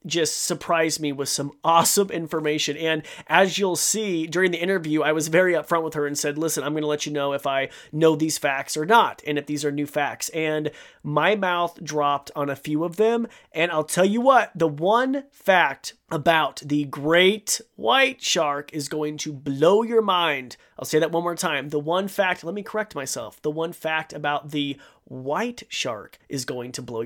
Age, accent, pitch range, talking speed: 30-49, American, 145-175 Hz, 210 wpm